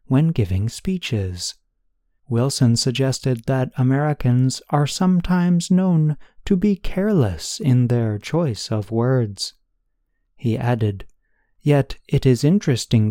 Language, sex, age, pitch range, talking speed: English, male, 30-49, 105-145 Hz, 110 wpm